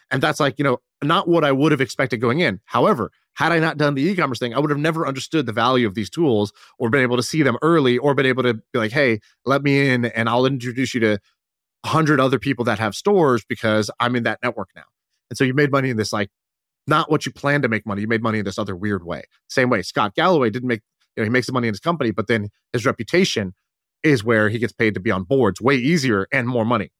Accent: American